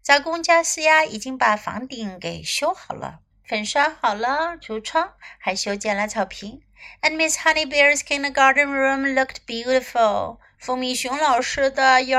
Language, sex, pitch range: Chinese, female, 230-310 Hz